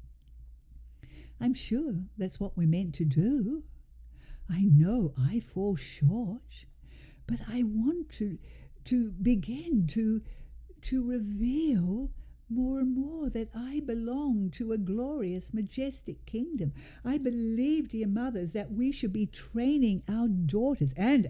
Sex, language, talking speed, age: female, English, 125 wpm, 60-79